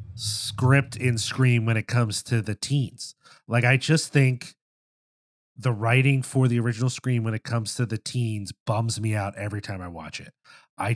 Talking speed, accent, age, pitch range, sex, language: 185 wpm, American, 30-49, 110-140 Hz, male, English